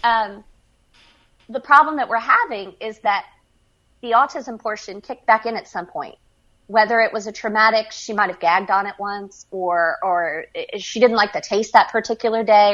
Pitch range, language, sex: 200-240 Hz, English, female